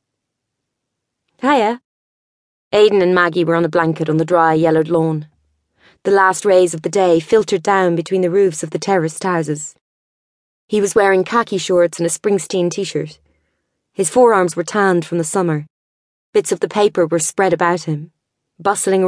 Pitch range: 160-195 Hz